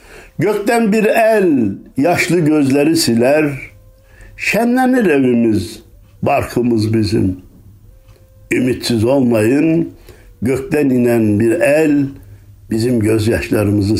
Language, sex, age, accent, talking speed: Turkish, male, 60-79, native, 75 wpm